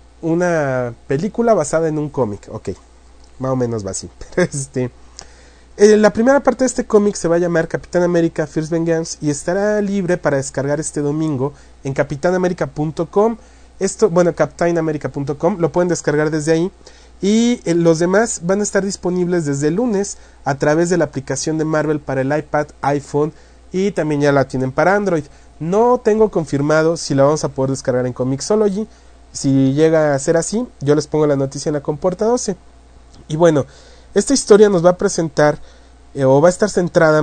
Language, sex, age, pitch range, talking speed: English, male, 30-49, 140-180 Hz, 185 wpm